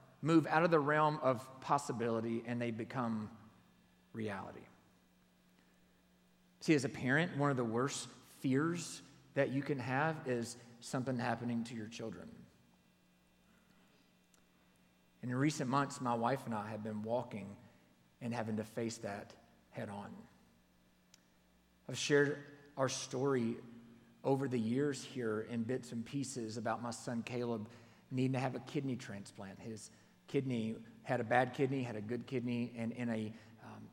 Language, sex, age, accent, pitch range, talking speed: English, male, 40-59, American, 110-135 Hz, 145 wpm